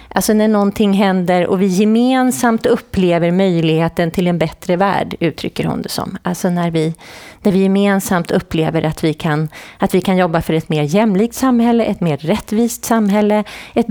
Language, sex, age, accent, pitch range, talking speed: Swedish, female, 30-49, native, 170-220 Hz, 175 wpm